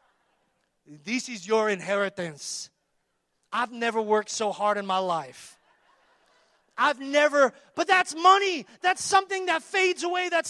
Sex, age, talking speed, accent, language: male, 30-49, 130 wpm, American, English